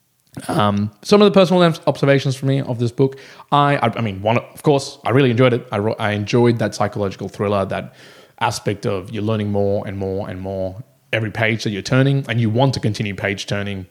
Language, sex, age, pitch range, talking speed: English, male, 20-39, 100-130 Hz, 210 wpm